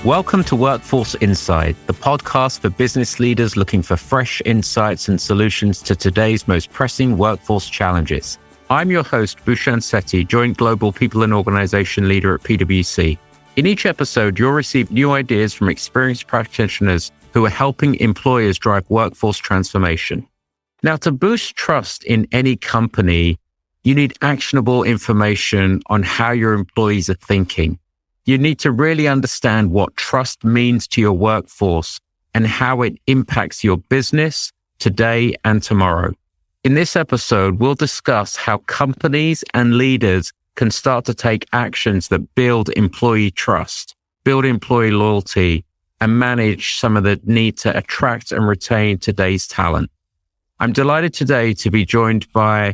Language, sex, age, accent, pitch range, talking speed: English, male, 50-69, British, 95-125 Hz, 145 wpm